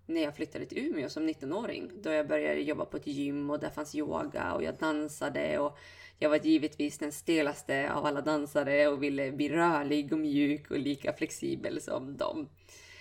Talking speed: 195 wpm